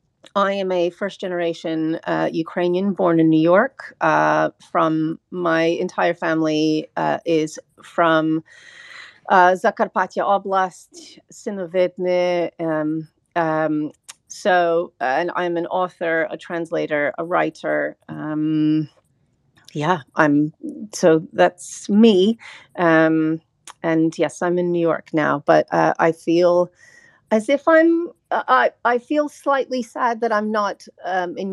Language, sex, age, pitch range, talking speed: English, female, 40-59, 165-200 Hz, 120 wpm